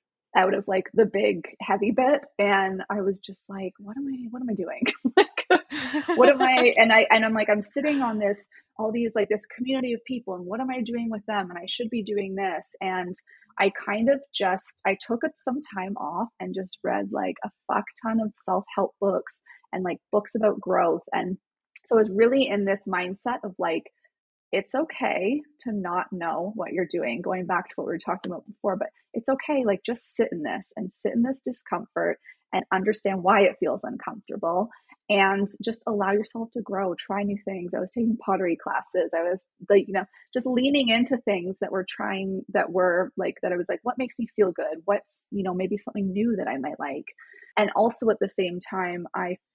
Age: 20-39